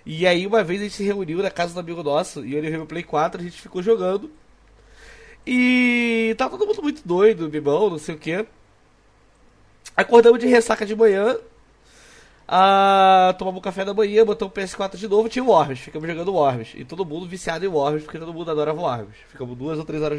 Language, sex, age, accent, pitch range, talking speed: Portuguese, male, 20-39, Brazilian, 165-220 Hz, 210 wpm